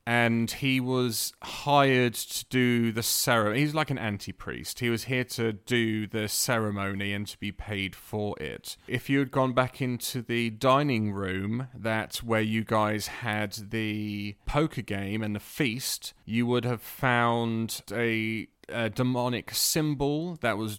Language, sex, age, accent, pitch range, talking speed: English, male, 30-49, British, 105-125 Hz, 160 wpm